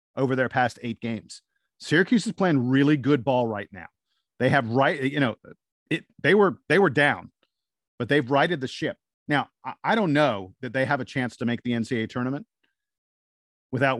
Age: 40-59